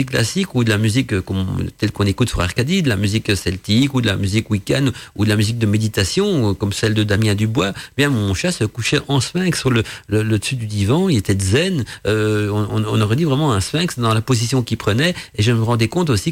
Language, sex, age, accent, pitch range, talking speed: French, male, 50-69, French, 110-150 Hz, 245 wpm